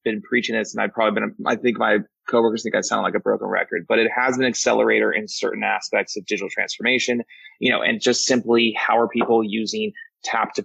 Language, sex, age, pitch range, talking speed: English, male, 30-49, 110-125 Hz, 225 wpm